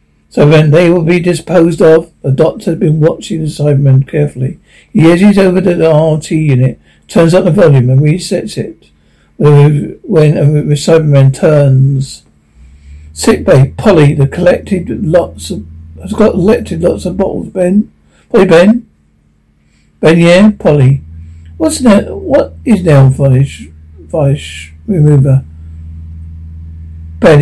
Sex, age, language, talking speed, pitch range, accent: male, 60-79, English, 140 wpm, 130-190 Hz, British